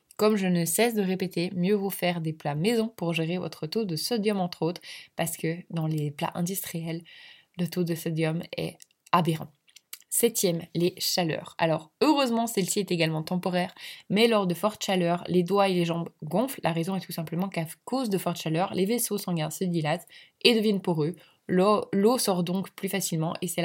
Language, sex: French, female